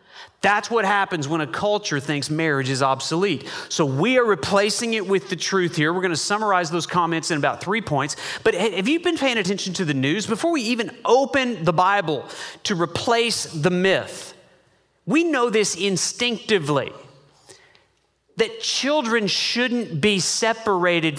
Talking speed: 160 wpm